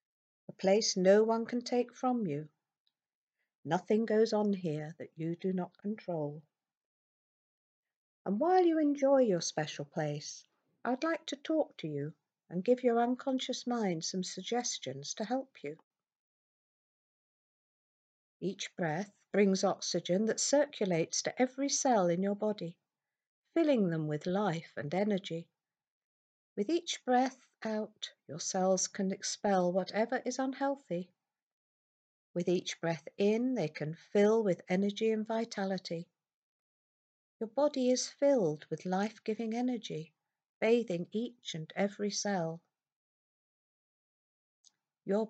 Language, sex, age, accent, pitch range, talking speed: English, female, 50-69, British, 165-230 Hz, 125 wpm